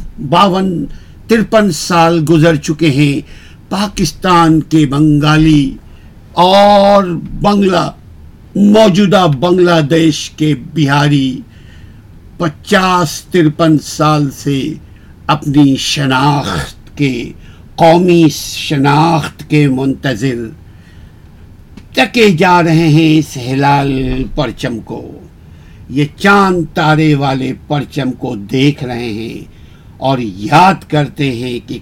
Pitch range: 125-165 Hz